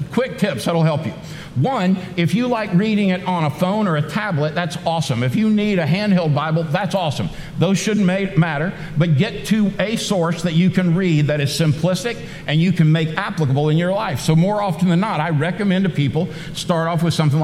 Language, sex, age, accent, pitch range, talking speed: English, male, 60-79, American, 155-195 Hz, 215 wpm